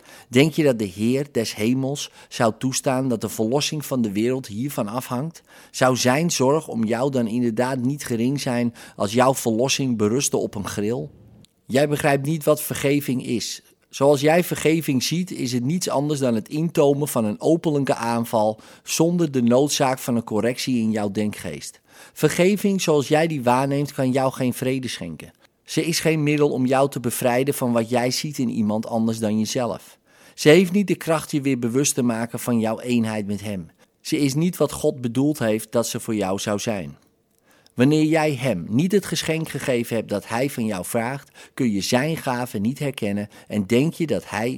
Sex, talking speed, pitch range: male, 195 wpm, 115-145 Hz